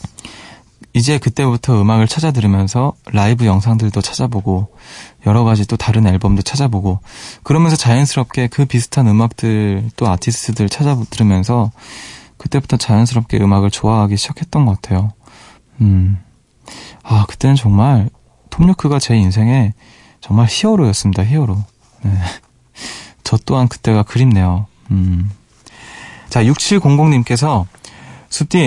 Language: Korean